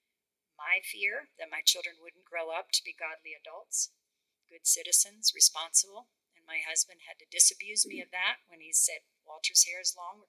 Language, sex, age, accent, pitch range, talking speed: English, female, 50-69, American, 165-230 Hz, 185 wpm